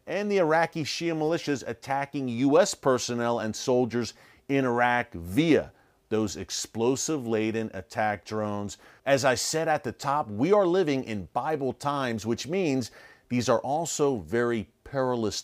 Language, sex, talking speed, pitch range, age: English, male, 140 wpm, 110-145 Hz, 40-59